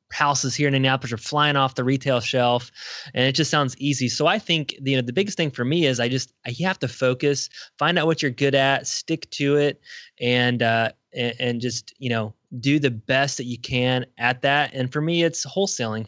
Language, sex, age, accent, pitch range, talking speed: English, male, 20-39, American, 125-155 Hz, 225 wpm